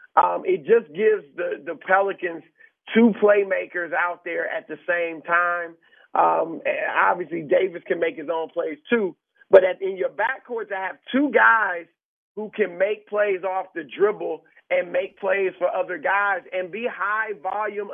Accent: American